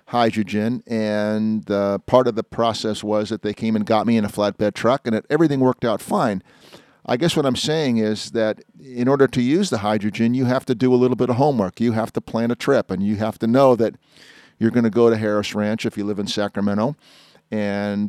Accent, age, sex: American, 50-69, male